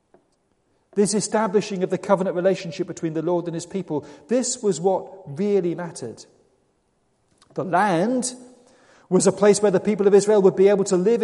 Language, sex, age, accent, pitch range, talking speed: English, male, 40-59, British, 175-230 Hz, 170 wpm